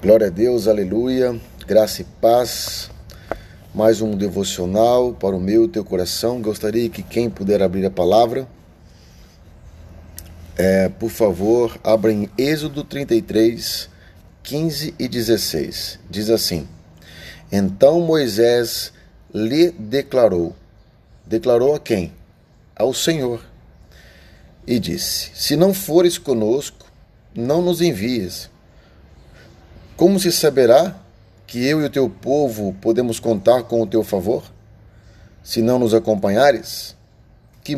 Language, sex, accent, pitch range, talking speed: Portuguese, male, Brazilian, 95-125 Hz, 115 wpm